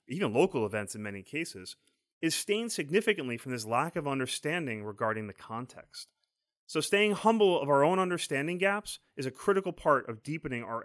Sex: male